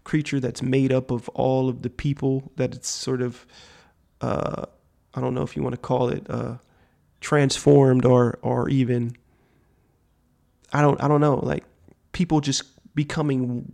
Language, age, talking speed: English, 30-49, 160 wpm